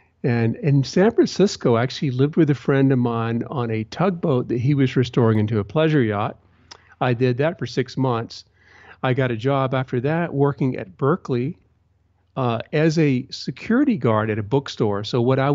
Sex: male